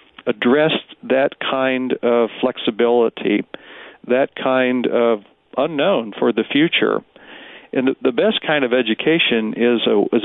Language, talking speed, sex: English, 125 wpm, male